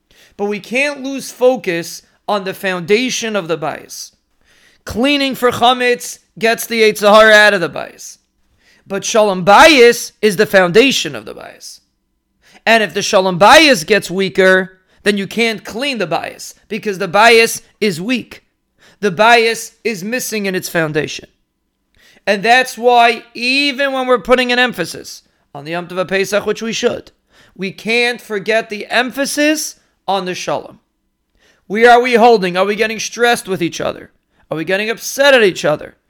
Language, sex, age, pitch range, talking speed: English, male, 40-59, 190-235 Hz, 165 wpm